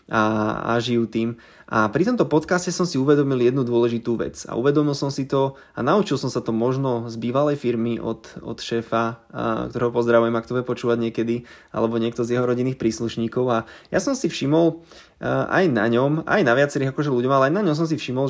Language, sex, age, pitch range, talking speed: Slovak, male, 20-39, 120-150 Hz, 205 wpm